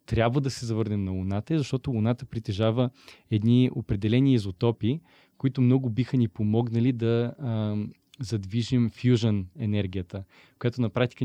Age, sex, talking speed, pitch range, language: 20-39, male, 135 wpm, 105-125 Hz, Bulgarian